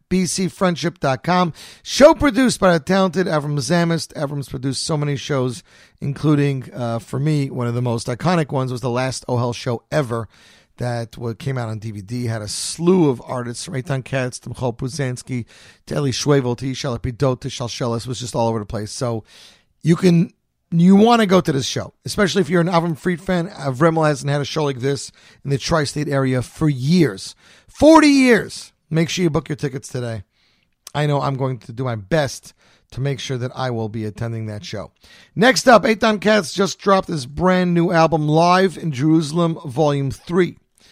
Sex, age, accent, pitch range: male, 40-59, American, 125-180 Hz